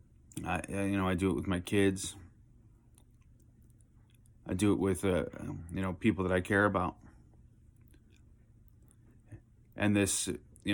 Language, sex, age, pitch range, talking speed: English, male, 30-49, 95-110 Hz, 135 wpm